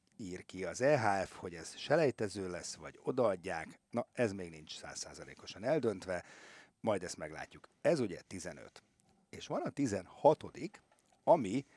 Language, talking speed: Hungarian, 140 wpm